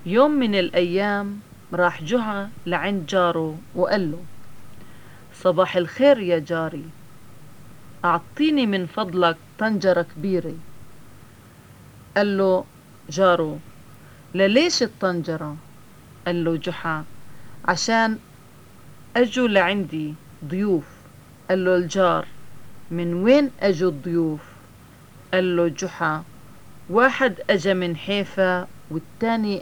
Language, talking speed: English, 95 wpm